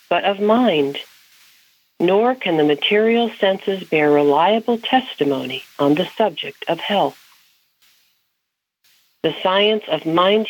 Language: English